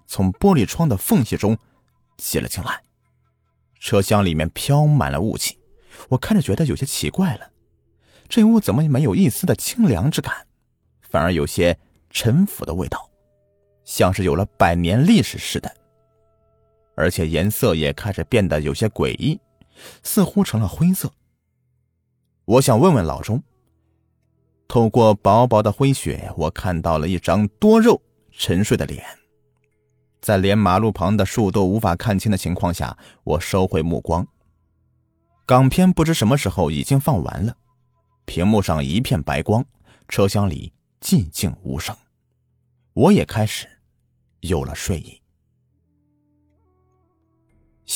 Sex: male